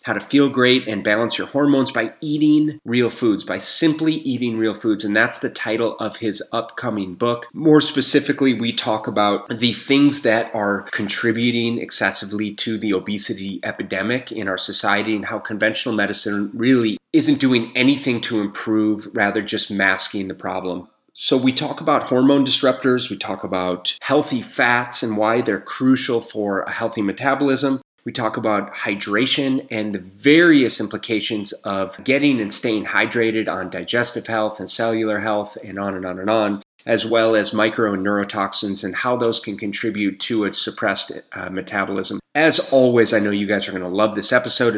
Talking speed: 175 wpm